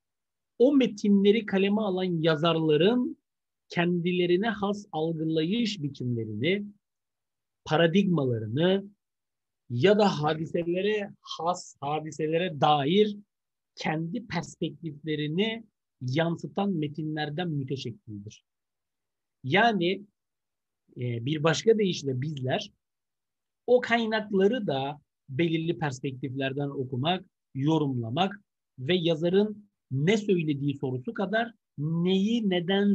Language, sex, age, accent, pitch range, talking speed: Turkish, male, 50-69, native, 140-200 Hz, 75 wpm